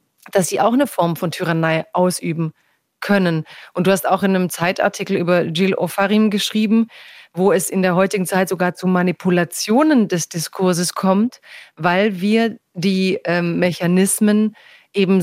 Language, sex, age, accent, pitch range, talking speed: German, female, 30-49, German, 175-205 Hz, 150 wpm